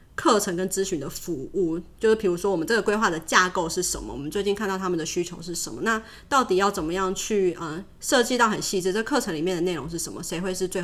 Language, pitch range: Chinese, 175-215 Hz